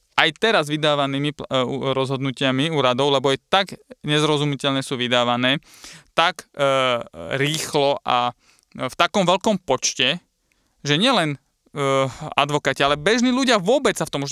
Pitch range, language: 135-175 Hz, Slovak